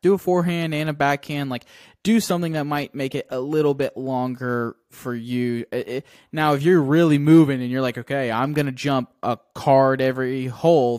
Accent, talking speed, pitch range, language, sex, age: American, 195 wpm, 115-145 Hz, English, male, 20-39